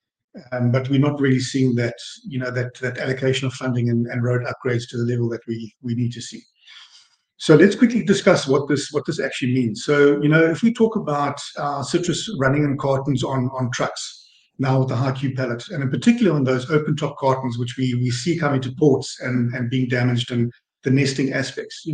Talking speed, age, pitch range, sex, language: 225 wpm, 50-69, 125-145 Hz, male, English